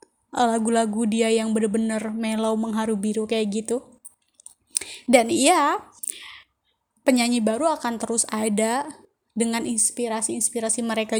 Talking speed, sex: 100 wpm, female